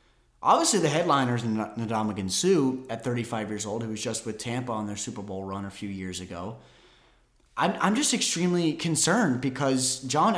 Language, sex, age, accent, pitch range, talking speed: English, male, 30-49, American, 125-170 Hz, 180 wpm